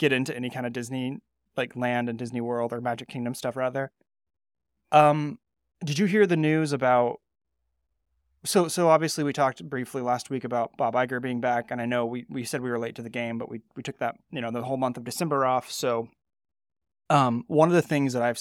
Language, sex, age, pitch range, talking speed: English, male, 20-39, 115-135 Hz, 225 wpm